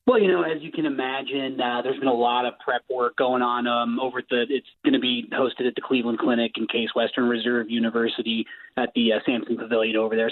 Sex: male